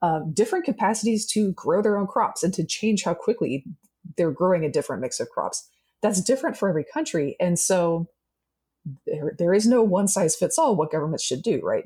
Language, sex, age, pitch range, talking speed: English, female, 20-39, 155-205 Hz, 200 wpm